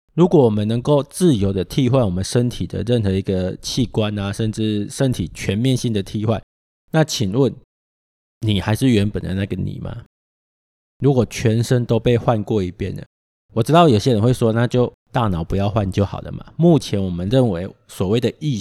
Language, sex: Chinese, male